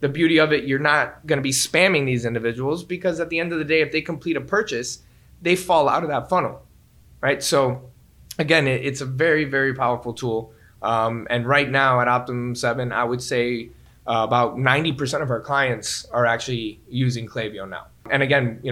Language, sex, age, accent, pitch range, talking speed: English, male, 20-39, American, 120-150 Hz, 200 wpm